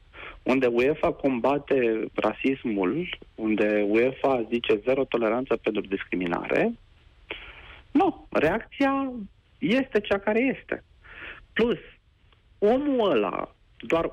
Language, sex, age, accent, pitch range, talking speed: Romanian, male, 40-59, native, 110-165 Hz, 90 wpm